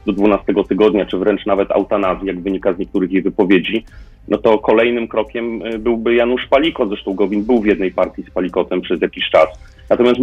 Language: Polish